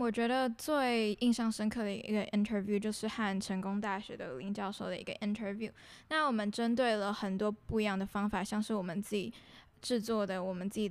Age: 10-29